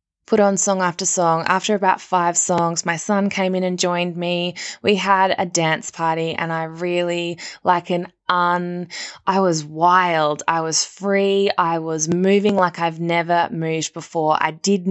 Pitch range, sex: 160-185 Hz, female